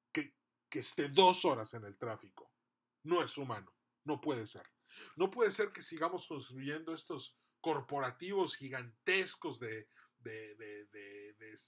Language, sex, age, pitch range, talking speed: Spanish, male, 40-59, 135-185 Hz, 140 wpm